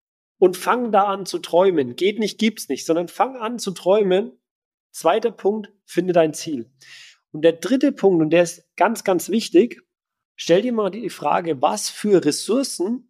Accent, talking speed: German, 175 wpm